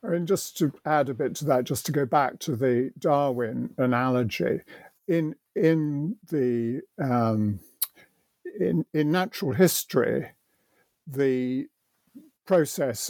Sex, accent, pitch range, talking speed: male, British, 130-180 Hz, 130 wpm